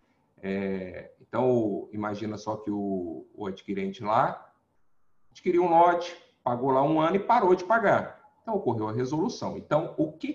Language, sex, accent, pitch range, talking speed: Portuguese, male, Brazilian, 105-150 Hz, 150 wpm